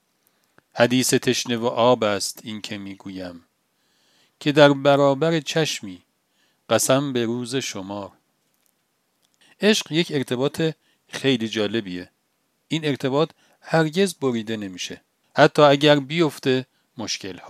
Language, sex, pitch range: Persian, male, 115-160 Hz